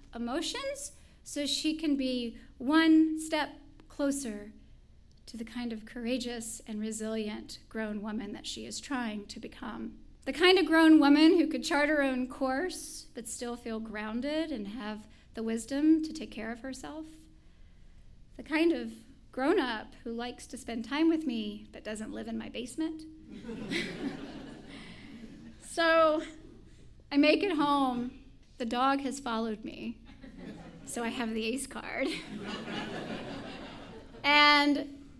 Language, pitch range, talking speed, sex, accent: English, 225-295 Hz, 140 wpm, female, American